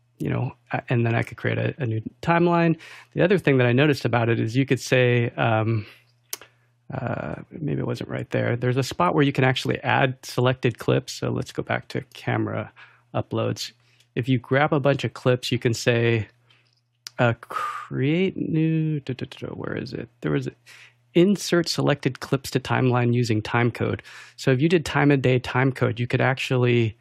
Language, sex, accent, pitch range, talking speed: English, male, American, 115-130 Hz, 190 wpm